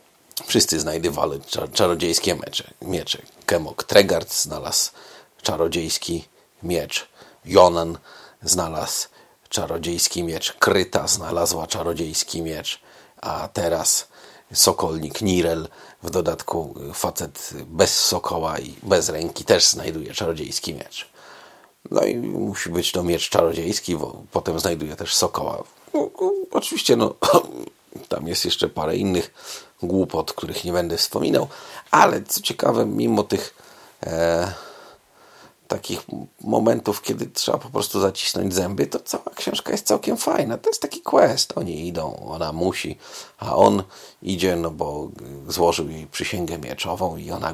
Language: Polish